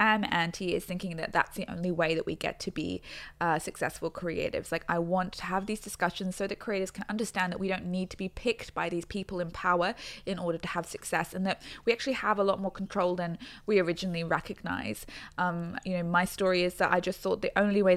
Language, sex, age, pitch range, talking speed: English, female, 20-39, 175-200 Hz, 240 wpm